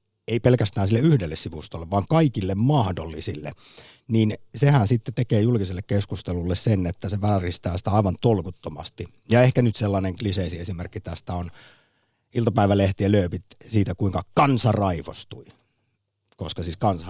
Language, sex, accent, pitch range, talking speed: Finnish, male, native, 90-115 Hz, 135 wpm